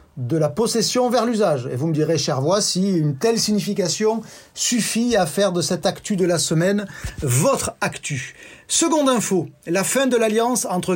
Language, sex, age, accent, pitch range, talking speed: French, male, 40-59, French, 160-210 Hz, 180 wpm